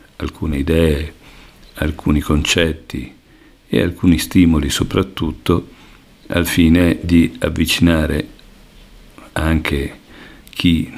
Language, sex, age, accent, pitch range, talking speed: Italian, male, 50-69, native, 75-90 Hz, 75 wpm